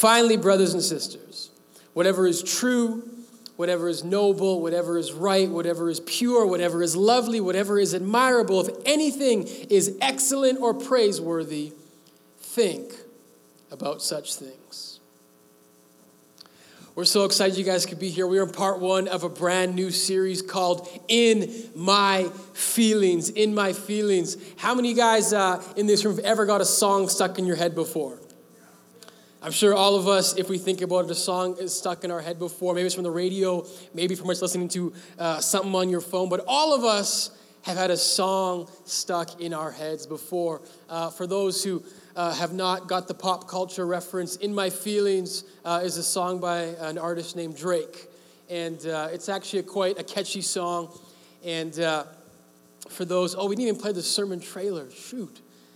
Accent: American